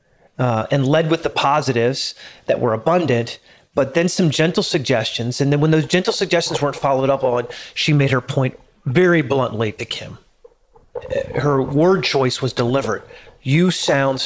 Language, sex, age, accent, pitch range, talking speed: English, male, 30-49, American, 130-175 Hz, 165 wpm